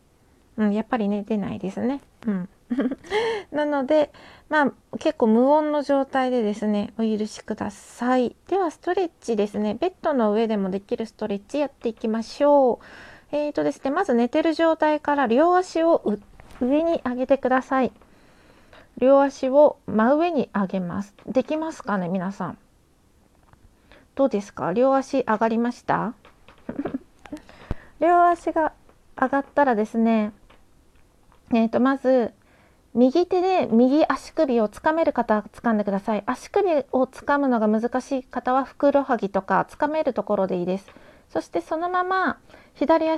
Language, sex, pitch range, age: Japanese, female, 225-300 Hz, 40-59